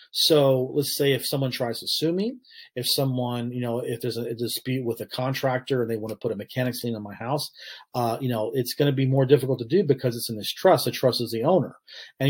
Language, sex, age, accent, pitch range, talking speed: English, male, 40-59, American, 115-140 Hz, 265 wpm